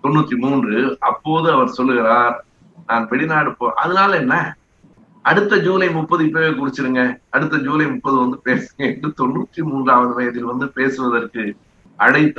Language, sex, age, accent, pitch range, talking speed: Tamil, male, 60-79, native, 120-145 Hz, 125 wpm